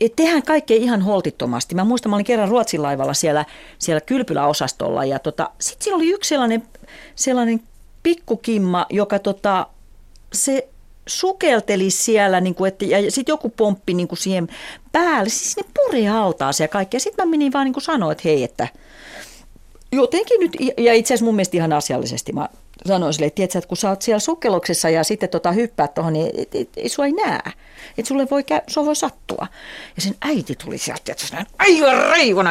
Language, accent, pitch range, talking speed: Finnish, native, 175-280 Hz, 190 wpm